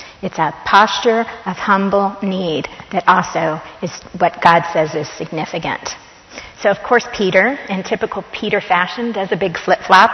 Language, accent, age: English, American, 40-59